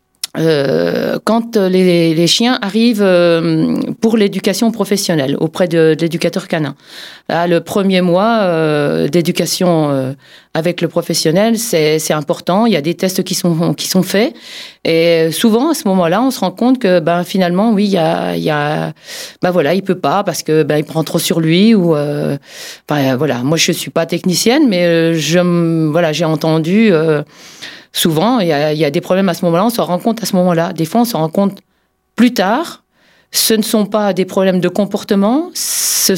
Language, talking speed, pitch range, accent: French, 200 wpm, 165-210 Hz, French